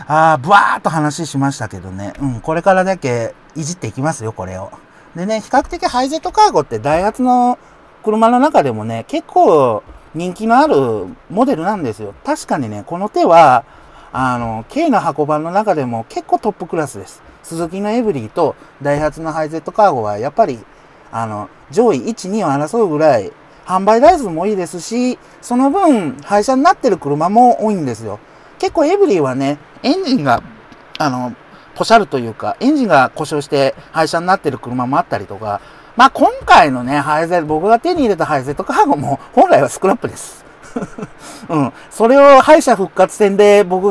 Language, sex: Japanese, male